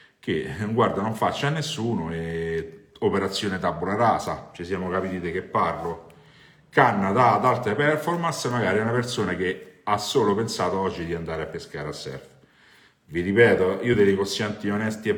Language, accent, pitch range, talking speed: Italian, native, 95-125 Hz, 170 wpm